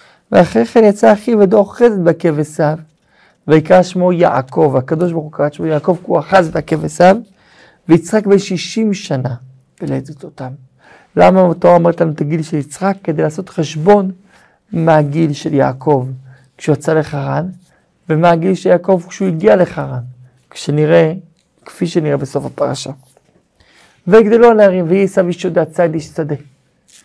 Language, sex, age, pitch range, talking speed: Hebrew, male, 50-69, 150-195 Hz, 140 wpm